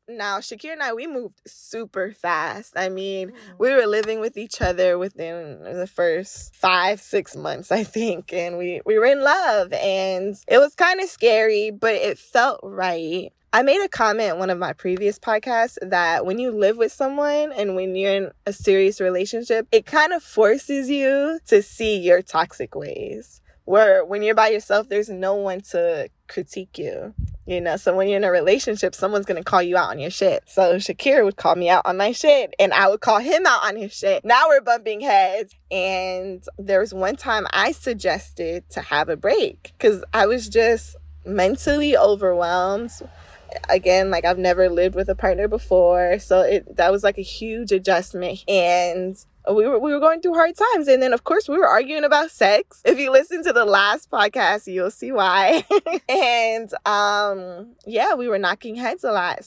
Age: 20-39